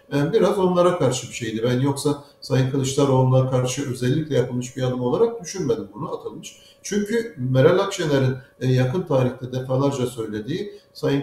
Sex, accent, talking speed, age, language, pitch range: male, native, 145 wpm, 60-79, Turkish, 130-185 Hz